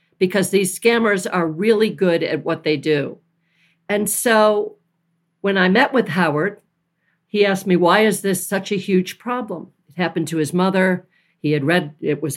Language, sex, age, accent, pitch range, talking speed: English, female, 50-69, American, 165-225 Hz, 180 wpm